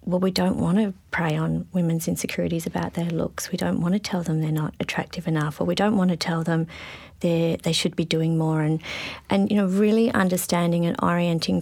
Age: 30-49